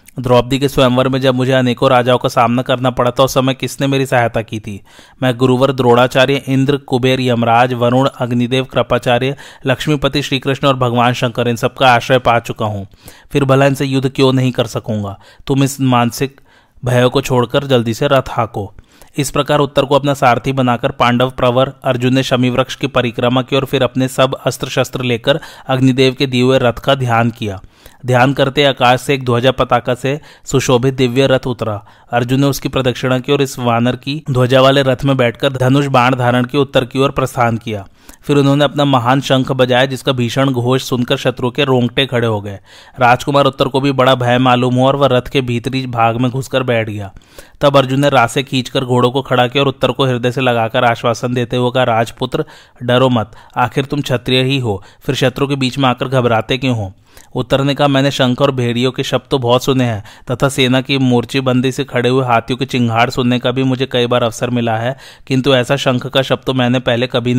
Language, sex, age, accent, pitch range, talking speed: Hindi, male, 30-49, native, 120-135 Hz, 205 wpm